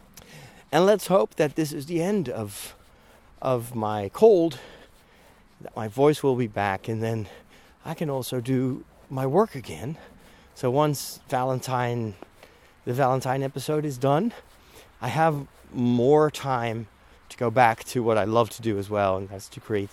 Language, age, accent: English, 30-49, American